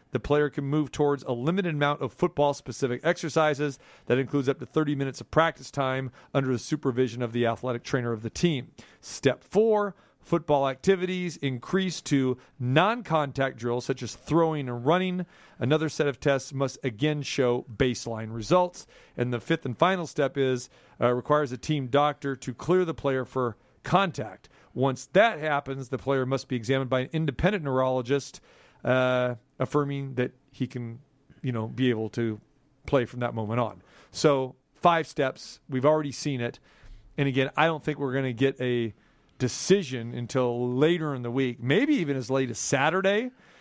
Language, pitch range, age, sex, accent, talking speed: English, 125-150 Hz, 40-59, male, American, 175 wpm